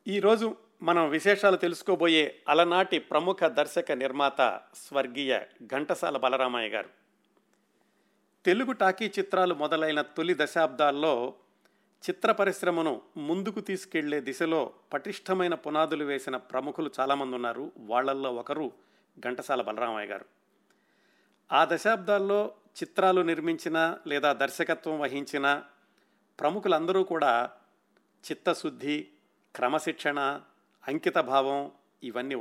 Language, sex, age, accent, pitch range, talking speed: Telugu, male, 50-69, native, 145-180 Hz, 90 wpm